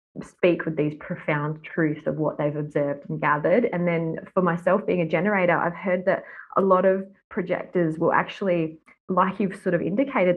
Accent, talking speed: Australian, 185 wpm